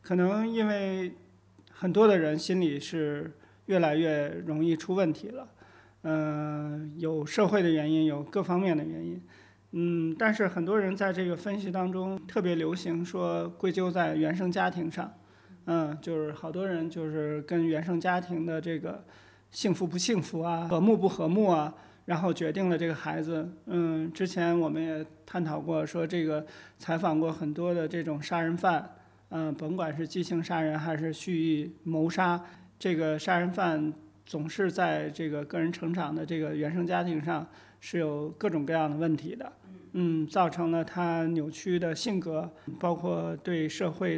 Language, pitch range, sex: Chinese, 155-180 Hz, male